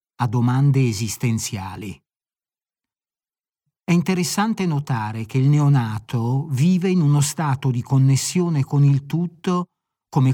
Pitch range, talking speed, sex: 125-155 Hz, 110 wpm, male